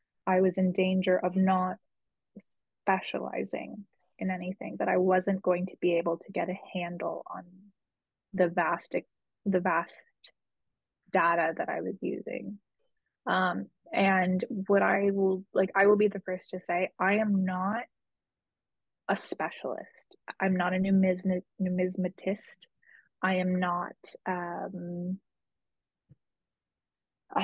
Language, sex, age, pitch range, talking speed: English, female, 20-39, 180-195 Hz, 125 wpm